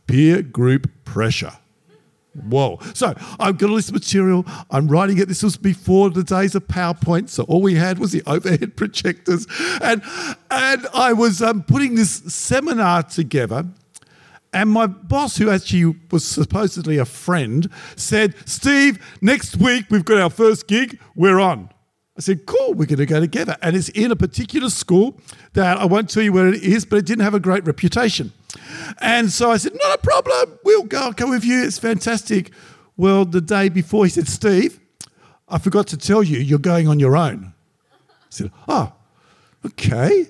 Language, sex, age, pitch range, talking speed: English, male, 50-69, 165-225 Hz, 185 wpm